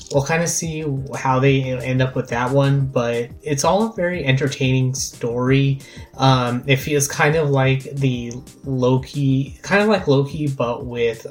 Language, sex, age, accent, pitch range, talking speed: English, male, 20-39, American, 120-145 Hz, 170 wpm